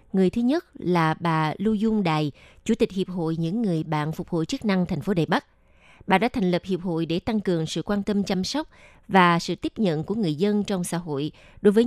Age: 20-39